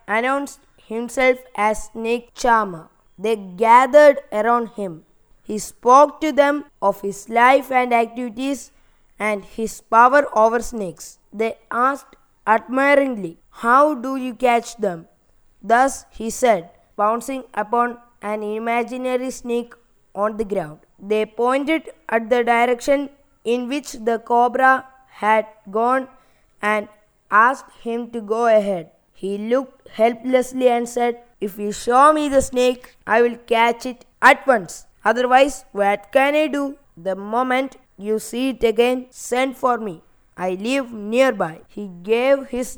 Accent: native